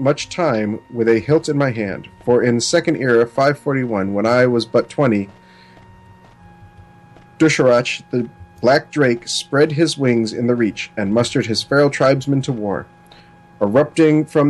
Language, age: English, 40-59